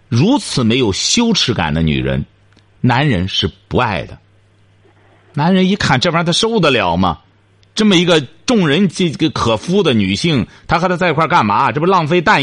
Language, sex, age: Chinese, male, 50-69